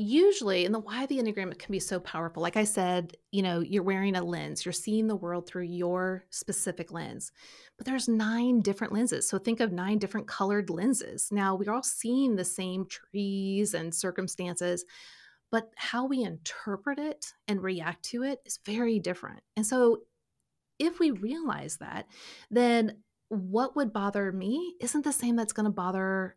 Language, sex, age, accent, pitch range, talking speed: English, female, 30-49, American, 190-245 Hz, 175 wpm